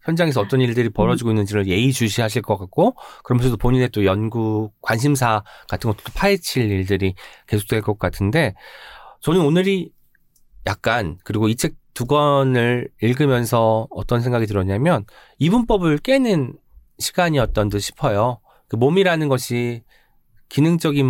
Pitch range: 105-160 Hz